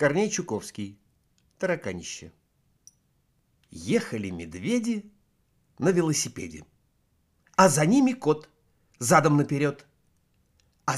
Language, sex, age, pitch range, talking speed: Russian, male, 50-69, 105-170 Hz, 75 wpm